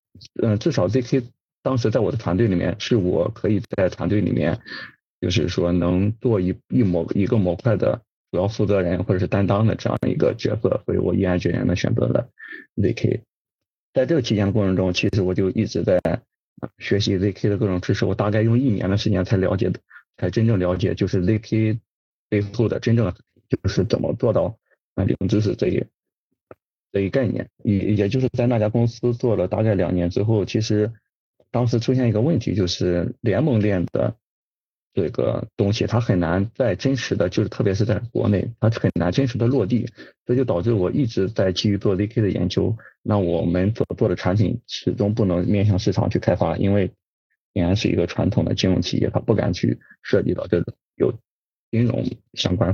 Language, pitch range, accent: Chinese, 95-120 Hz, native